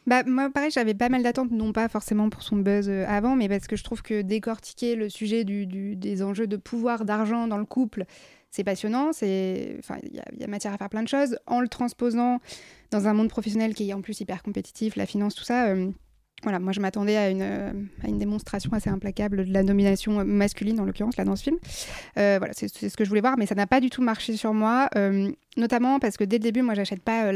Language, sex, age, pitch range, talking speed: French, female, 20-39, 200-235 Hz, 250 wpm